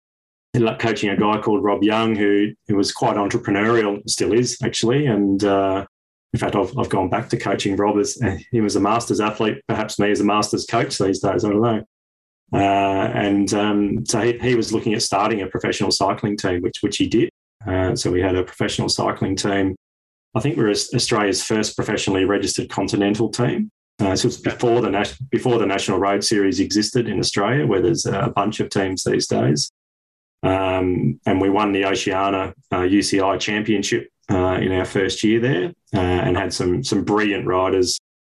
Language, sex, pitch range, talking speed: English, male, 95-110 Hz, 195 wpm